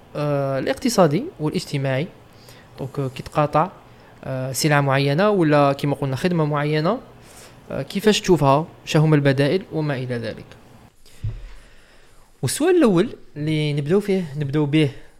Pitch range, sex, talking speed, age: 130-150 Hz, male, 105 wpm, 20-39